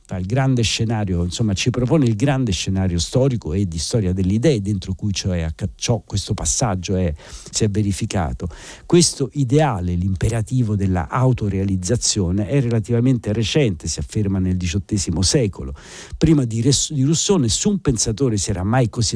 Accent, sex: native, male